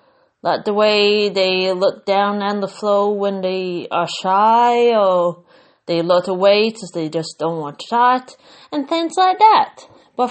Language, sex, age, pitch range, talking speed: English, female, 30-49, 190-250 Hz, 165 wpm